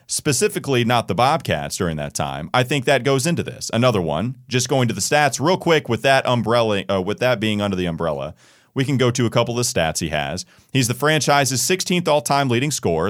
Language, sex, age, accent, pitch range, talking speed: English, male, 30-49, American, 100-135 Hz, 230 wpm